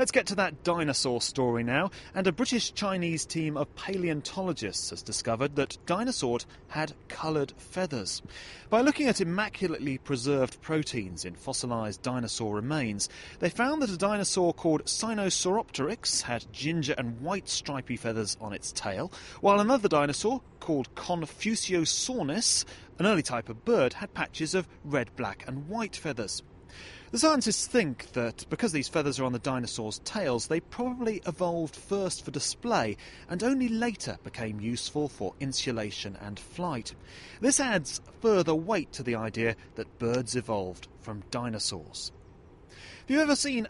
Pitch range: 120-190 Hz